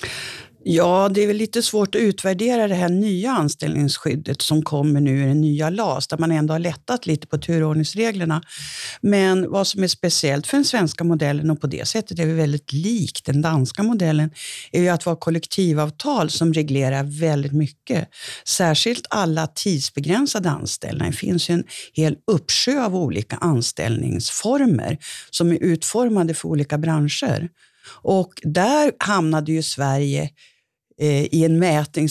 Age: 60-79